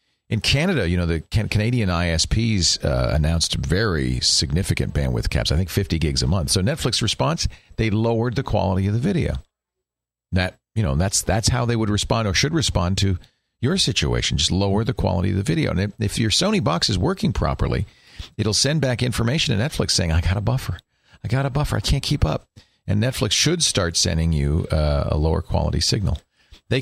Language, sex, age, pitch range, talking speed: English, male, 50-69, 85-115 Hz, 200 wpm